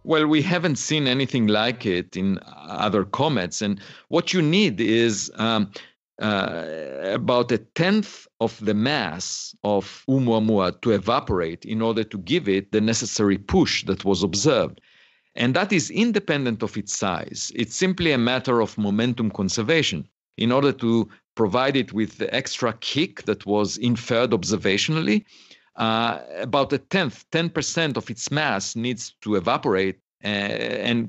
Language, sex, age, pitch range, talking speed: English, male, 50-69, 105-135 Hz, 150 wpm